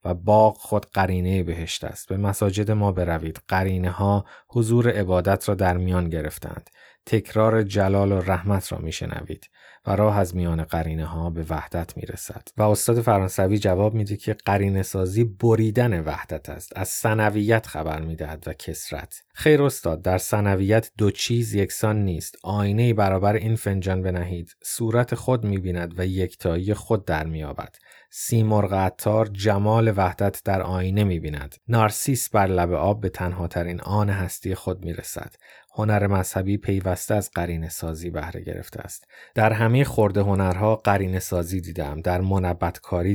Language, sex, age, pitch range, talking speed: Persian, male, 30-49, 85-105 Hz, 145 wpm